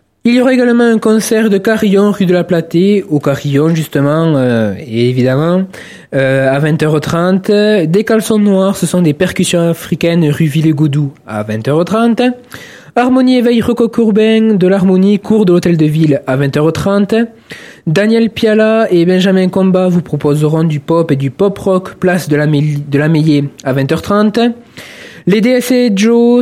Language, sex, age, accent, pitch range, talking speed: French, male, 20-39, French, 160-205 Hz, 160 wpm